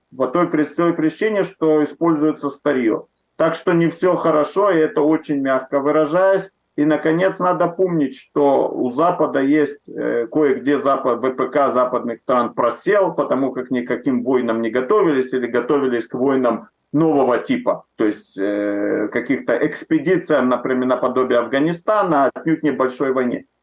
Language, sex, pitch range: Russian, male, 130-160 Hz